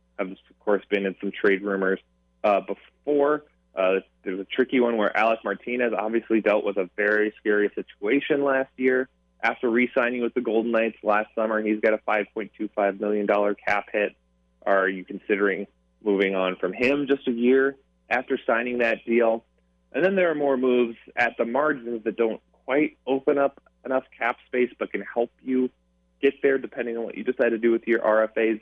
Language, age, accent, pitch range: English, 20-39, American, 100-120 Hz